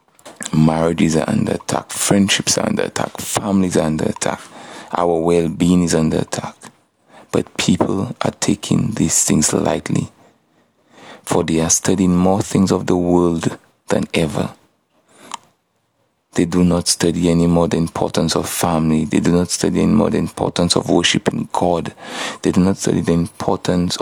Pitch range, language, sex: 85-95 Hz, English, male